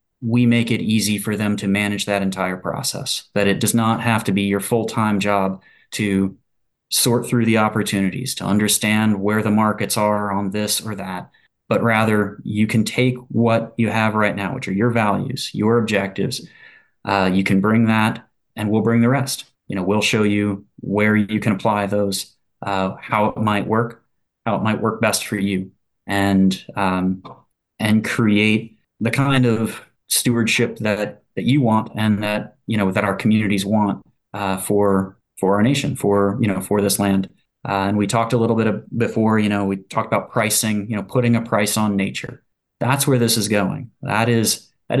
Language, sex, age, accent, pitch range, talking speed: English, male, 30-49, American, 100-115 Hz, 195 wpm